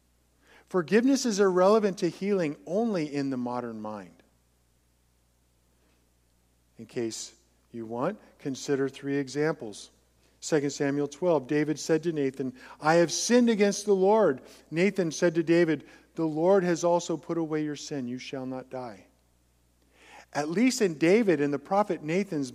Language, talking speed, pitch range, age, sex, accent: English, 145 wpm, 105-180 Hz, 50-69, male, American